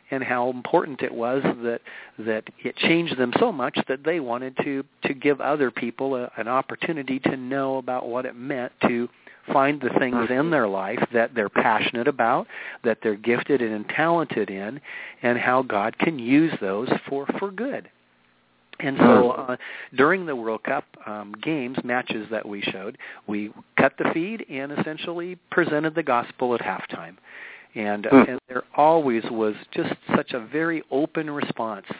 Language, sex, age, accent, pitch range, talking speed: English, male, 50-69, American, 115-145 Hz, 170 wpm